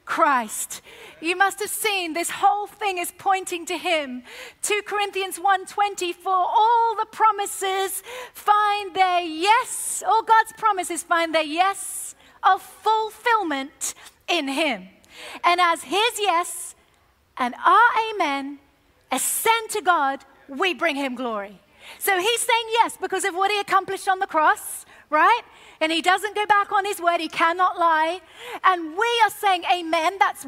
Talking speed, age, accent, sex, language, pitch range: 150 wpm, 40-59, British, female, English, 315-405 Hz